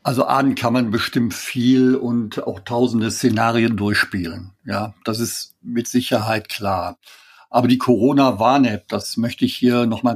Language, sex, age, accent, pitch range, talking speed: German, male, 50-69, German, 110-130 Hz, 150 wpm